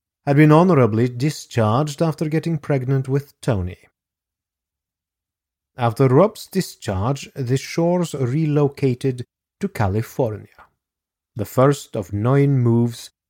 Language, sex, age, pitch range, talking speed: English, male, 30-49, 95-140 Hz, 100 wpm